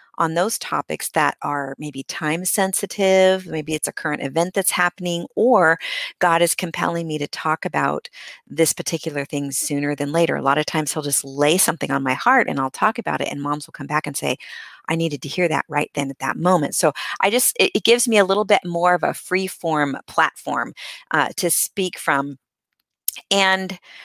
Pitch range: 145-195 Hz